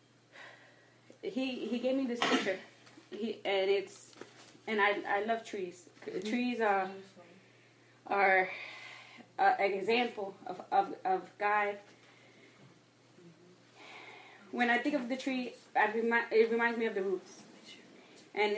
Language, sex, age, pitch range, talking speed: English, female, 20-39, 205-245 Hz, 130 wpm